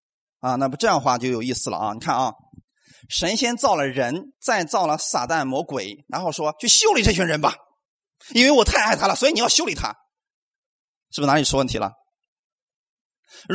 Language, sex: Chinese, male